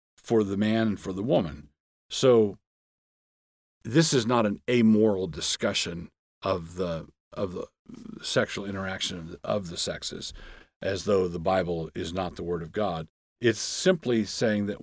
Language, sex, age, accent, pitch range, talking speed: English, male, 50-69, American, 90-115 Hz, 160 wpm